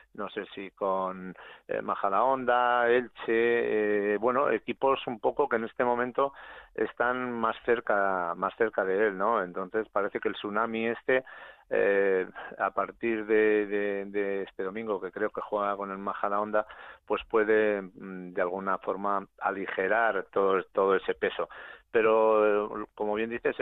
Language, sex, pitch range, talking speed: Spanish, male, 100-120 Hz, 155 wpm